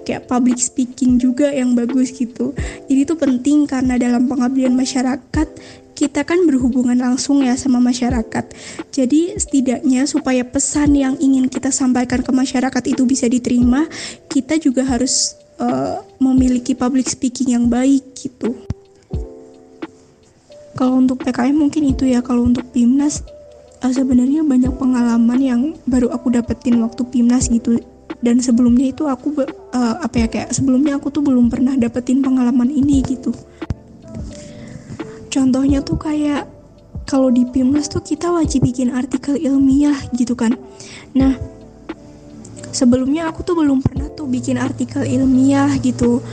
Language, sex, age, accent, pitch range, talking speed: Indonesian, female, 20-39, native, 245-275 Hz, 135 wpm